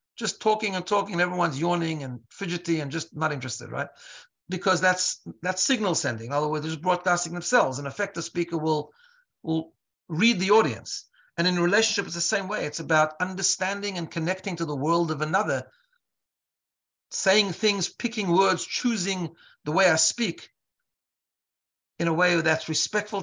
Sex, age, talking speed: male, 60-79, 170 wpm